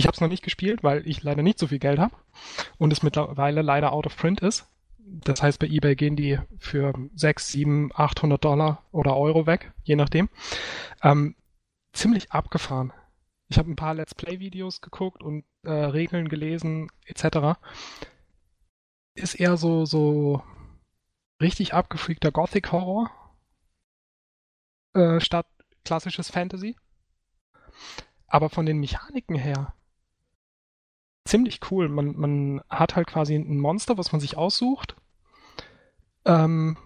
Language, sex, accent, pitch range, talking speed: German, male, German, 145-175 Hz, 140 wpm